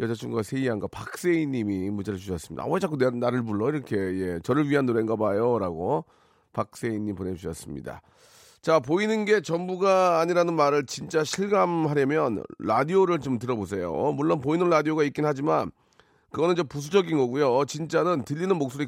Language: Korean